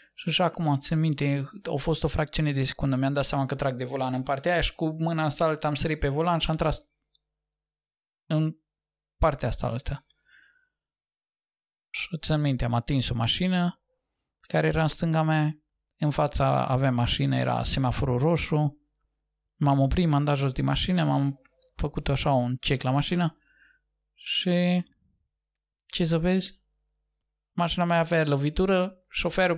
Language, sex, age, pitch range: Romanian, male, 20-39, 135-165 Hz